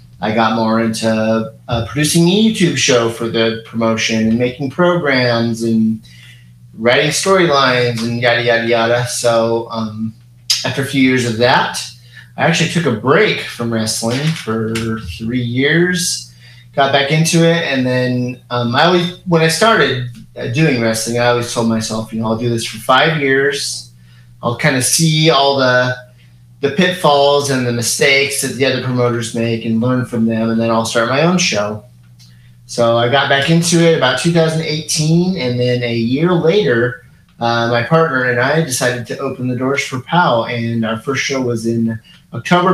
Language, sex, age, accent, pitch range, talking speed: English, male, 30-49, American, 115-145 Hz, 175 wpm